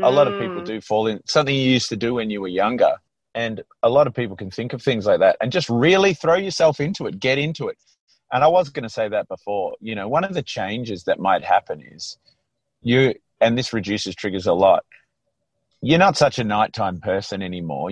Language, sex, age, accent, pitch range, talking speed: English, male, 30-49, Australian, 100-130 Hz, 230 wpm